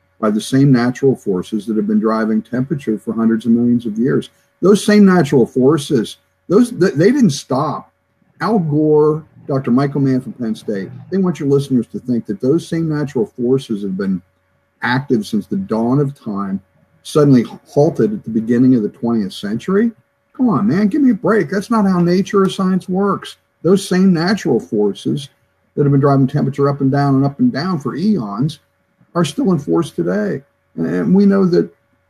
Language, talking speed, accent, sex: English, 190 wpm, American, male